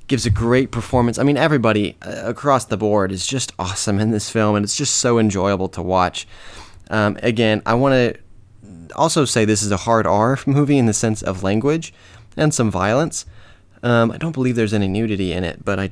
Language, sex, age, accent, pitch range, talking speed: English, male, 20-39, American, 95-115 Hz, 205 wpm